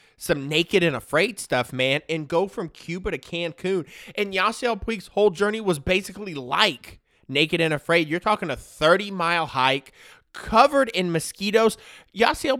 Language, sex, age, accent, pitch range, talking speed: English, male, 20-39, American, 155-225 Hz, 150 wpm